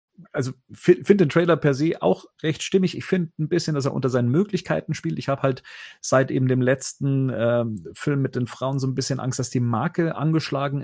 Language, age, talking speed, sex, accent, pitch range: German, 40-59, 215 wpm, male, German, 120-145 Hz